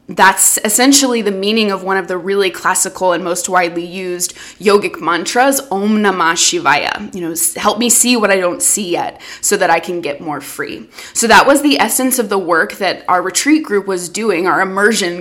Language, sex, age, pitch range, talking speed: English, female, 20-39, 185-225 Hz, 205 wpm